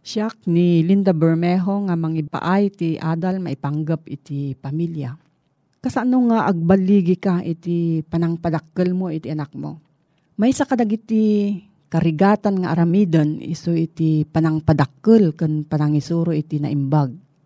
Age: 40-59